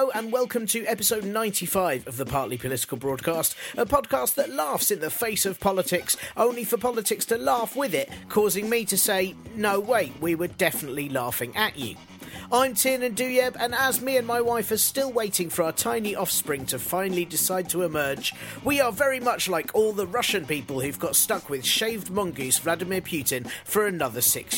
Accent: British